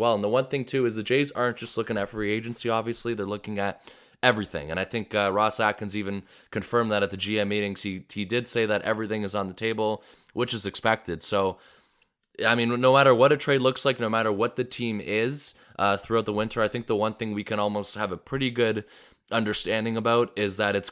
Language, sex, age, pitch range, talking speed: English, male, 20-39, 100-120 Hz, 240 wpm